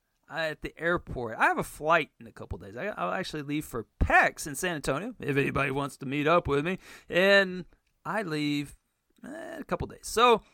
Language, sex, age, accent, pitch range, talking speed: English, male, 40-59, American, 145-175 Hz, 215 wpm